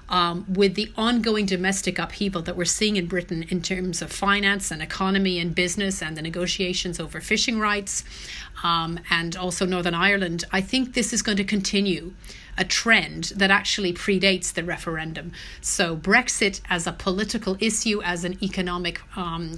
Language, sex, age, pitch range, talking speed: English, female, 30-49, 175-205 Hz, 165 wpm